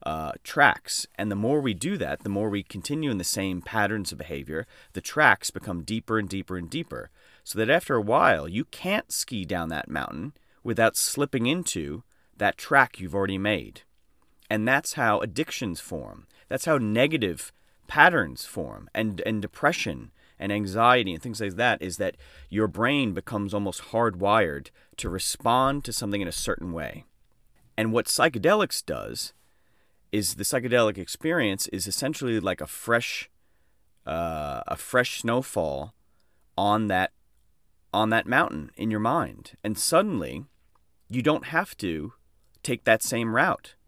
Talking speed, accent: 155 wpm, American